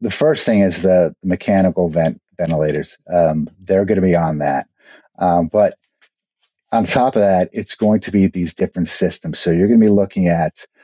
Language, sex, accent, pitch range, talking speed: English, male, American, 80-95 Hz, 195 wpm